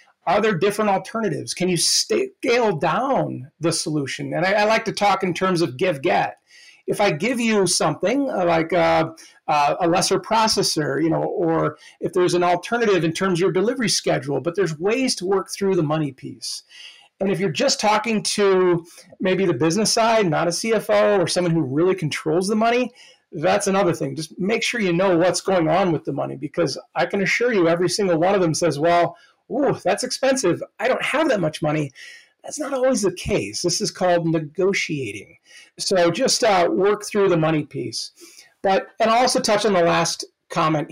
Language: English